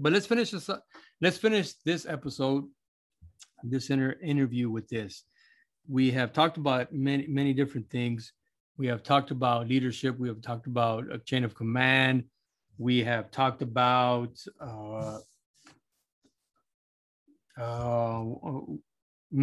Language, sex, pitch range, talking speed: English, male, 115-140 Hz, 120 wpm